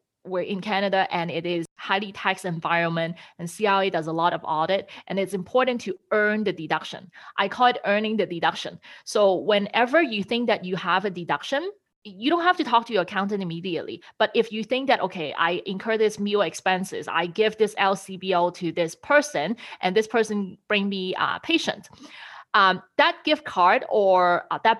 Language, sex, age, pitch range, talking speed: English, female, 30-49, 180-220 Hz, 190 wpm